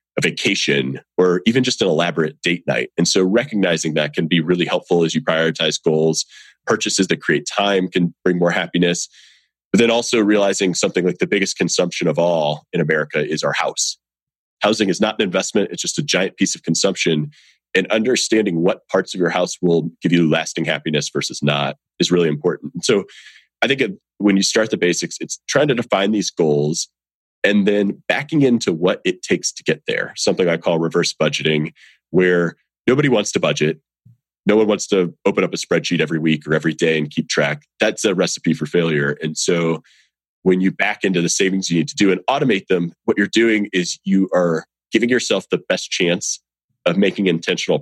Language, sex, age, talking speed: English, male, 30-49, 200 wpm